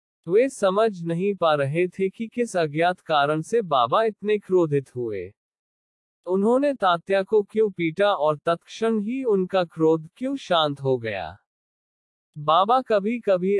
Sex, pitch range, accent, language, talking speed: male, 145-200 Hz, native, Hindi, 140 wpm